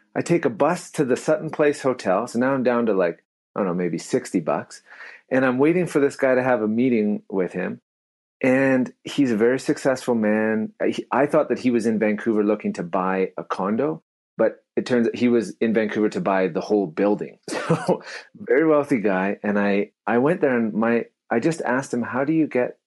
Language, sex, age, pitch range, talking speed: English, male, 30-49, 105-135 Hz, 220 wpm